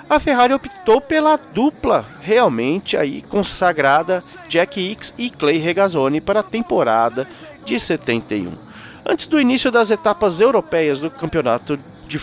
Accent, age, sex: Brazilian, 40-59, male